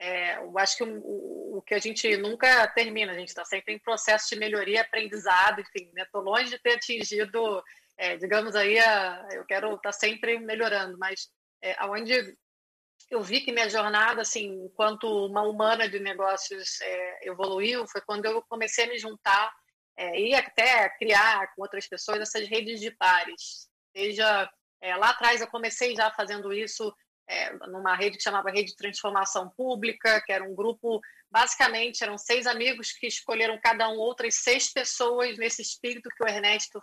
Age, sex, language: 30-49, female, Portuguese